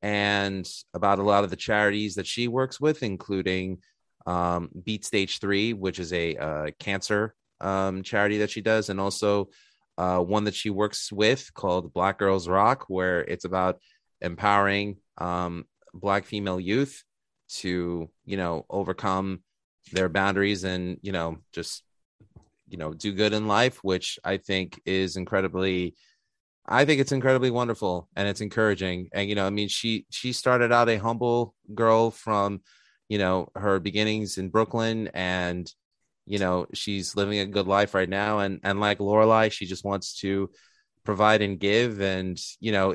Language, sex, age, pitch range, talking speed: English, male, 30-49, 95-105 Hz, 165 wpm